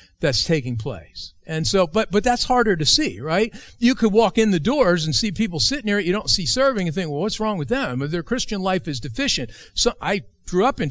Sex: male